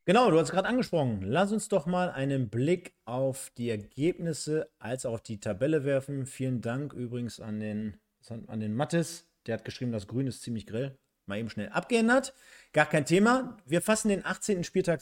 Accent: German